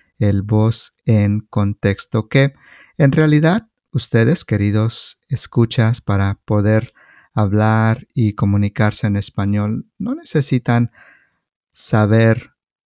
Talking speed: 95 wpm